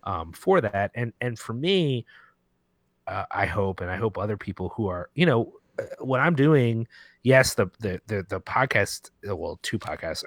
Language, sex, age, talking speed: English, male, 30-49, 180 wpm